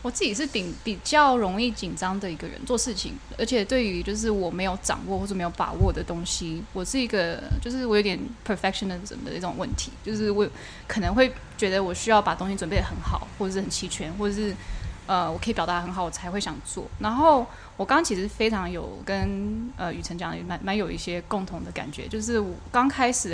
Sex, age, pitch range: female, 20-39, 180-235 Hz